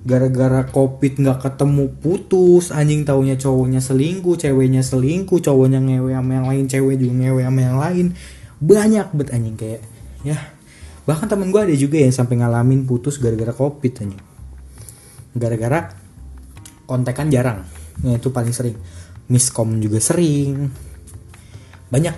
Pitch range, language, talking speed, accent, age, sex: 115-140 Hz, Indonesian, 135 wpm, native, 20-39, male